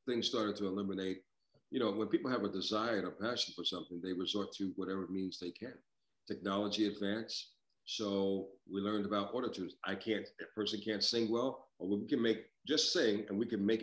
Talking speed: 205 wpm